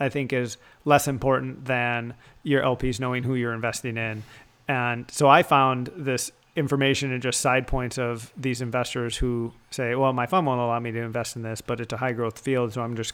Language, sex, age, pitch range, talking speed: English, male, 30-49, 120-140 Hz, 215 wpm